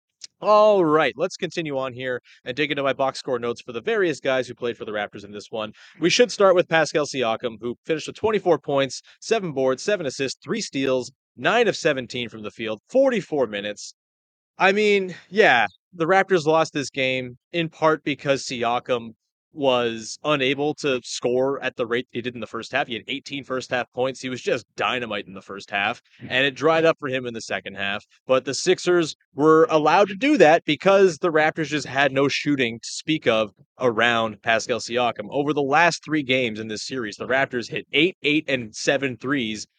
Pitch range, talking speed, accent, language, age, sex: 120-160 Hz, 205 wpm, American, English, 30-49, male